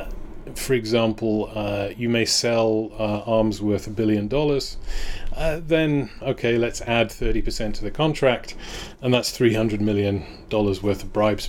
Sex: male